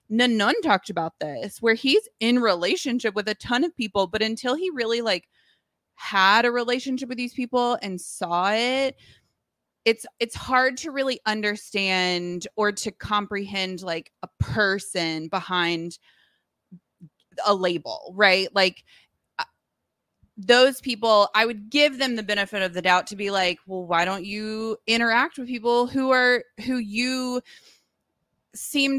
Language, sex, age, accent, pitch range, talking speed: English, female, 20-39, American, 180-235 Hz, 145 wpm